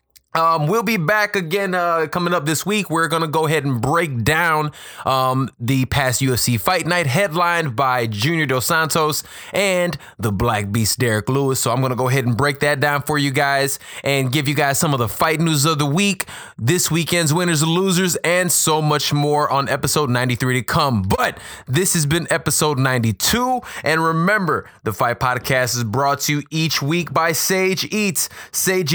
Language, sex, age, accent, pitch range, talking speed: English, male, 20-39, American, 130-175 Hz, 195 wpm